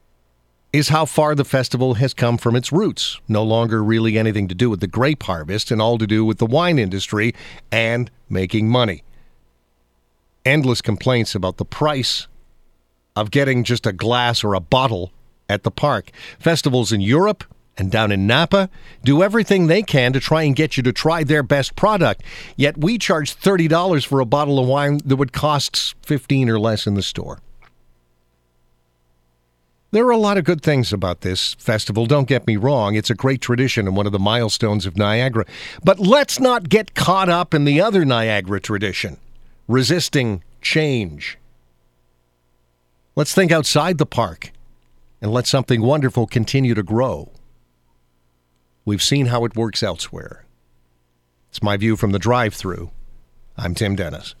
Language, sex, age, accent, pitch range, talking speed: English, male, 50-69, American, 90-140 Hz, 170 wpm